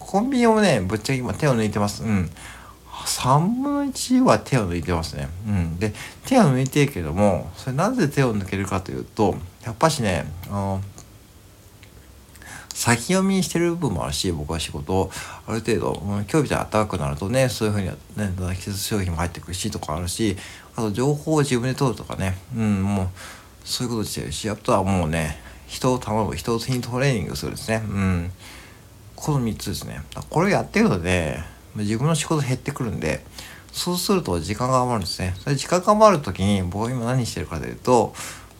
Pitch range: 90-125 Hz